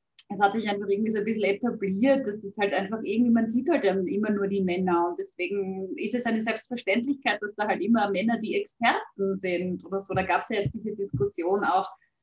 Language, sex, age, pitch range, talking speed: German, female, 20-39, 190-230 Hz, 225 wpm